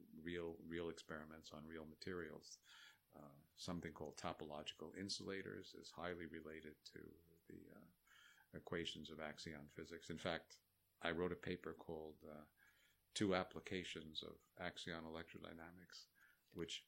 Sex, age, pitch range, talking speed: male, 50-69, 80-90 Hz, 125 wpm